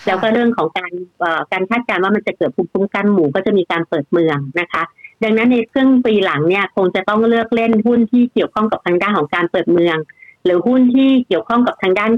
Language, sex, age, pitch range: Thai, female, 60-79, 175-230 Hz